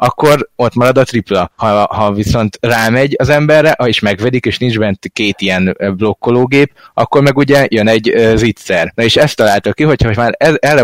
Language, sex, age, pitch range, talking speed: Hungarian, male, 20-39, 100-125 Hz, 190 wpm